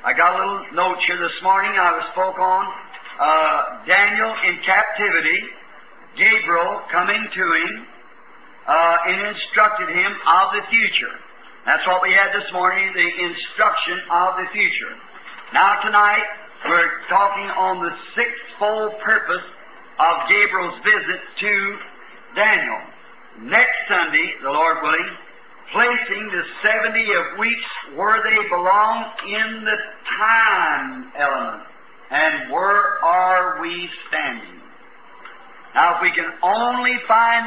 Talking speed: 125 wpm